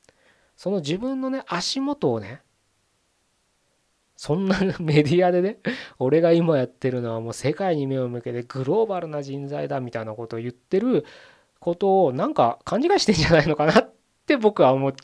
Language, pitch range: Japanese, 125-210 Hz